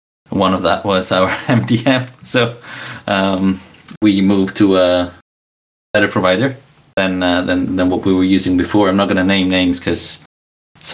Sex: male